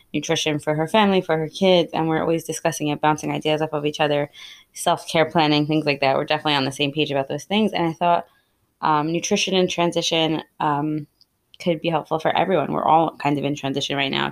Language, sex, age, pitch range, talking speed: English, female, 20-39, 145-165 Hz, 220 wpm